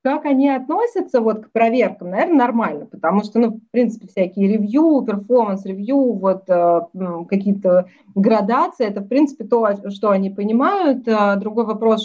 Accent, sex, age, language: native, female, 30-49, Russian